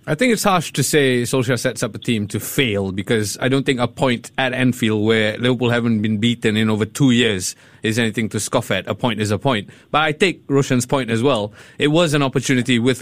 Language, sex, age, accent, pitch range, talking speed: English, male, 20-39, Malaysian, 120-150 Hz, 240 wpm